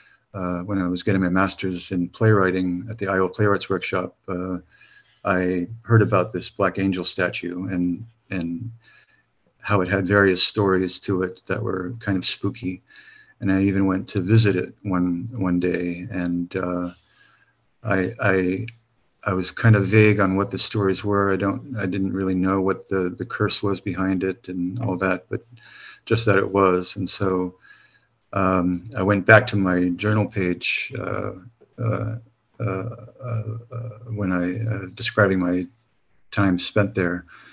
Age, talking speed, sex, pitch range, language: 50-69, 165 wpm, male, 90-105 Hz, English